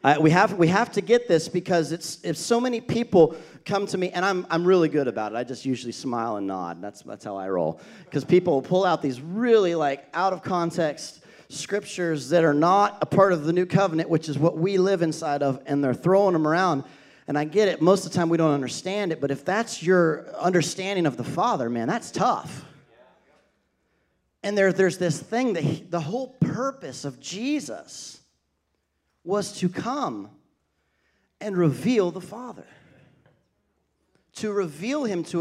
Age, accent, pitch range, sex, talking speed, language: 40-59, American, 150-195 Hz, male, 190 wpm, English